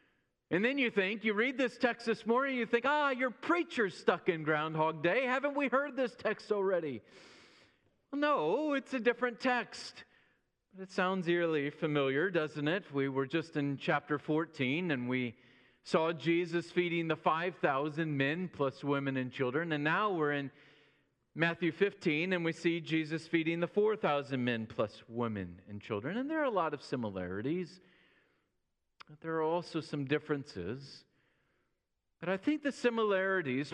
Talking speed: 160 wpm